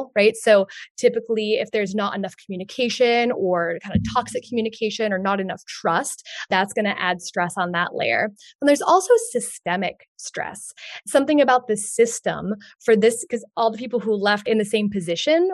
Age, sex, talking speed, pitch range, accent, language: 20-39, female, 180 wpm, 195-245 Hz, American, English